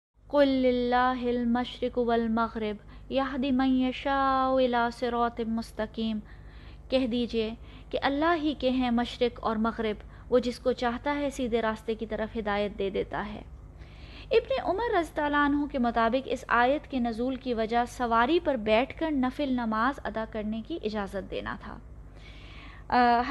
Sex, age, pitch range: female, 20-39, 230-285 Hz